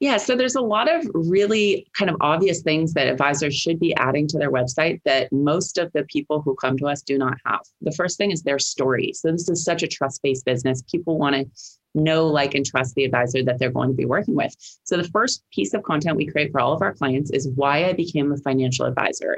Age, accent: 30-49, American